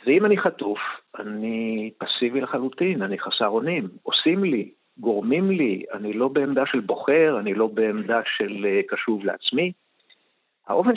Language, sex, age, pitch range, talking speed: Hebrew, male, 50-69, 115-175 Hz, 135 wpm